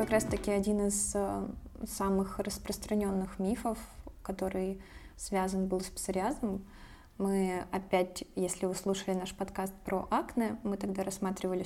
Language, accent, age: Russian, native, 20-39